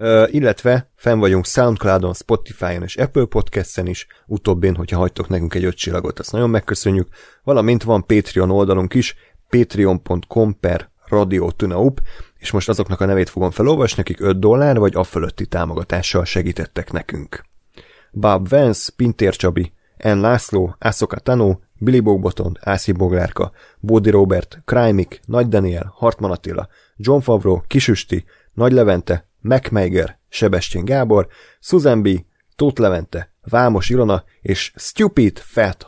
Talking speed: 125 wpm